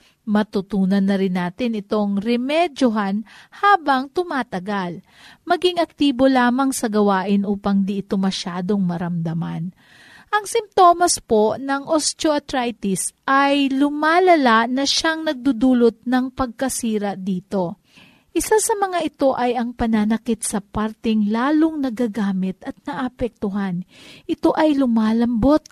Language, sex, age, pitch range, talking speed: Filipino, female, 40-59, 215-295 Hz, 110 wpm